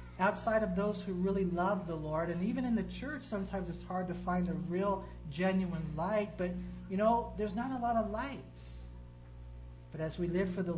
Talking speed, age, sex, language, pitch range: 205 wpm, 40-59, male, English, 160-195 Hz